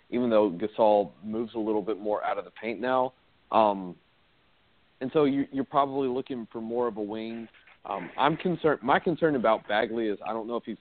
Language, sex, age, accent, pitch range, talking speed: English, male, 40-59, American, 105-125 Hz, 210 wpm